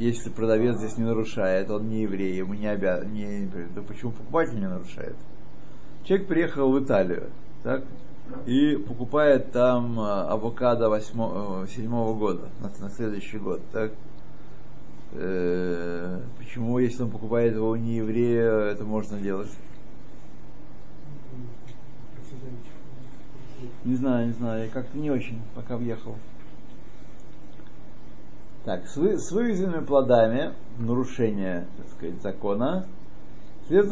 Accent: native